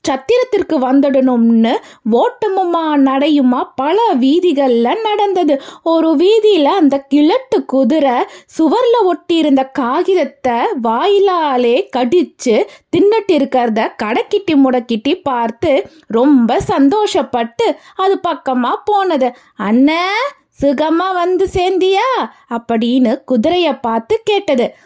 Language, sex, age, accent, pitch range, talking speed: Tamil, female, 20-39, native, 275-365 Hz, 80 wpm